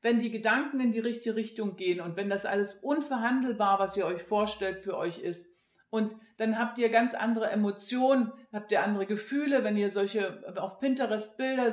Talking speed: 190 wpm